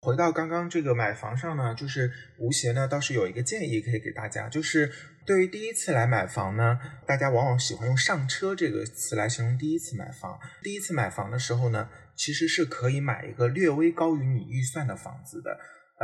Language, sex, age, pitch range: Chinese, male, 20-39, 115-155 Hz